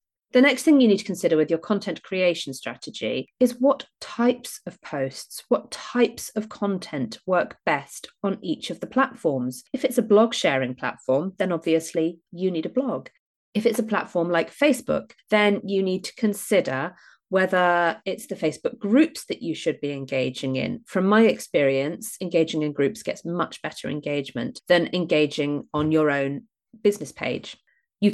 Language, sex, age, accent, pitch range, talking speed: English, female, 30-49, British, 145-215 Hz, 170 wpm